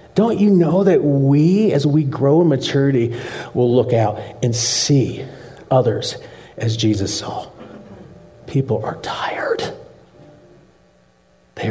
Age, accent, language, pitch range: 50-69, American, English, 100-160 Hz